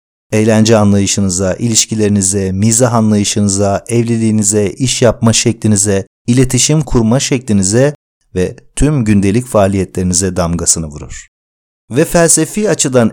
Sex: male